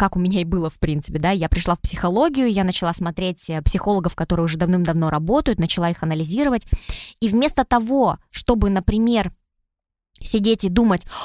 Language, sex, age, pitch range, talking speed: Russian, female, 20-39, 185-240 Hz, 165 wpm